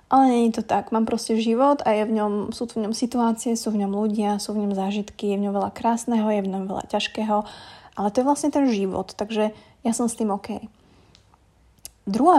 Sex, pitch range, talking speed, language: female, 205-235 Hz, 230 wpm, Slovak